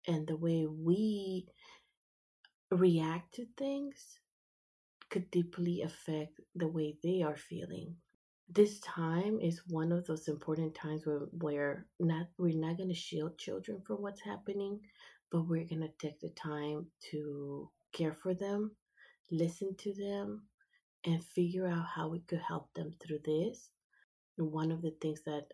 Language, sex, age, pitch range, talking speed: English, female, 20-39, 155-180 Hz, 150 wpm